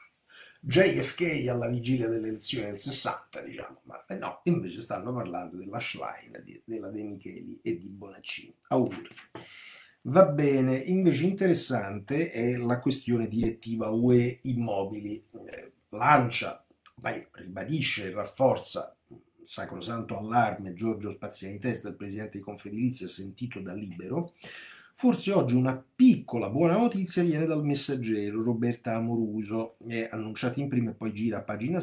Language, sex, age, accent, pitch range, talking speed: Italian, male, 50-69, native, 105-135 Hz, 135 wpm